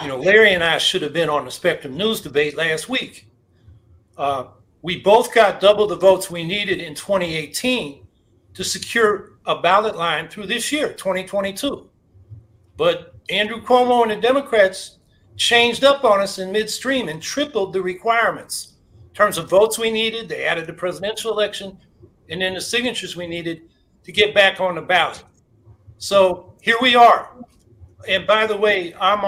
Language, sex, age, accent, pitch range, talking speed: English, male, 60-79, American, 165-225 Hz, 170 wpm